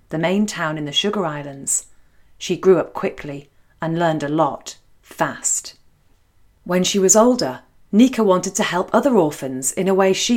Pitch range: 150-200 Hz